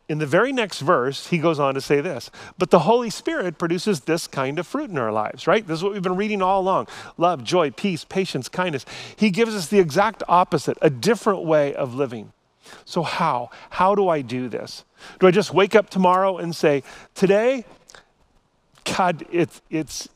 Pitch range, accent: 135-190 Hz, American